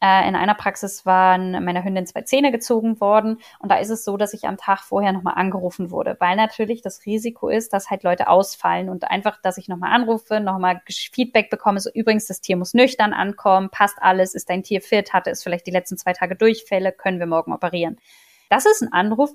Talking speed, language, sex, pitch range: 215 wpm, German, female, 185-220 Hz